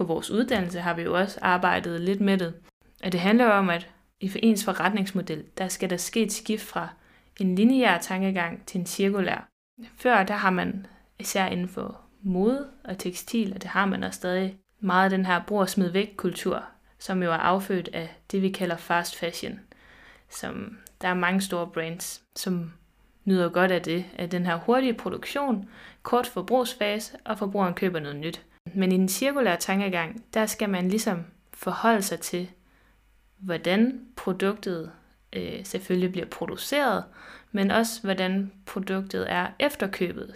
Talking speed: 170 wpm